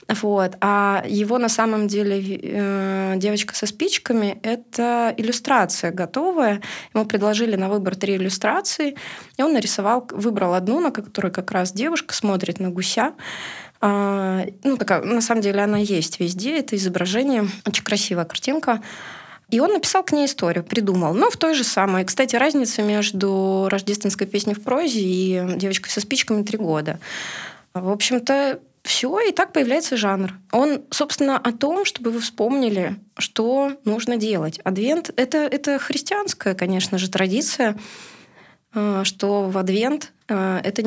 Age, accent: 20-39, native